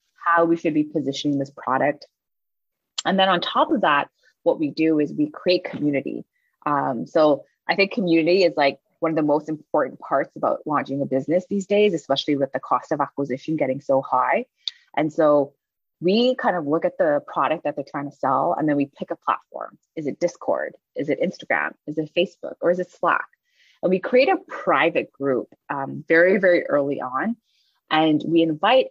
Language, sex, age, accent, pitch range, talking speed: English, female, 20-39, American, 150-215 Hz, 195 wpm